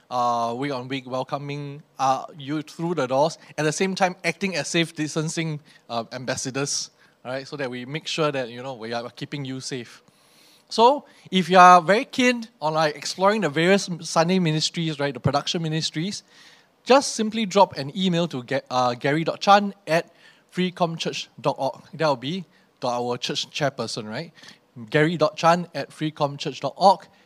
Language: English